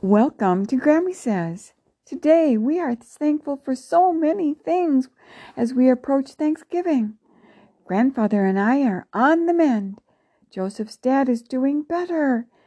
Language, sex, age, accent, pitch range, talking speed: English, female, 60-79, American, 215-295 Hz, 135 wpm